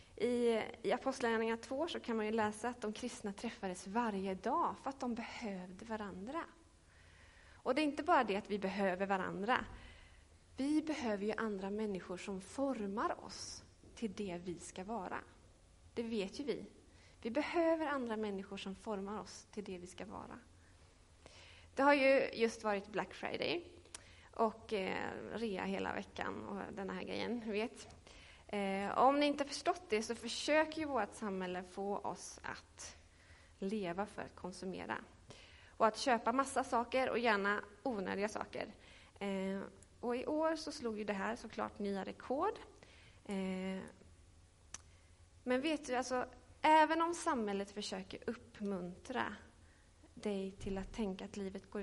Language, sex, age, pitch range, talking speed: Swedish, female, 30-49, 195-250 Hz, 150 wpm